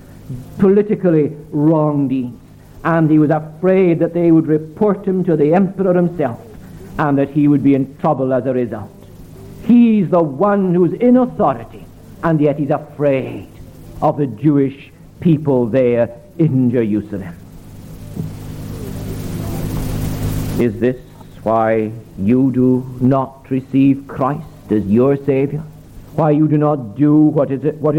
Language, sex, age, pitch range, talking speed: English, male, 60-79, 135-185 Hz, 135 wpm